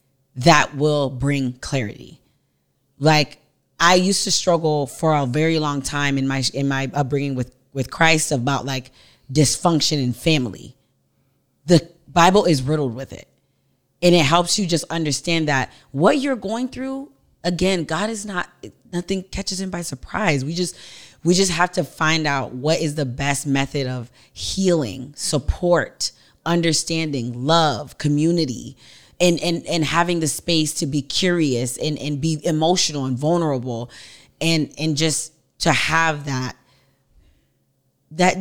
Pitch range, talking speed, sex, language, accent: 135-170 Hz, 145 wpm, female, English, American